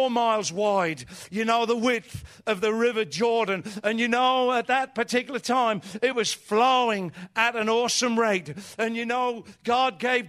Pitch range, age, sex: 205-250 Hz, 50-69, male